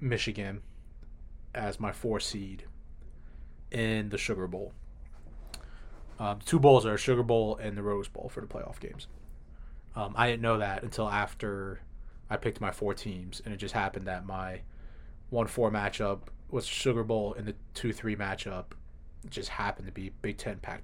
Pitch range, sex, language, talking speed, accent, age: 95-110 Hz, male, English, 170 wpm, American, 20-39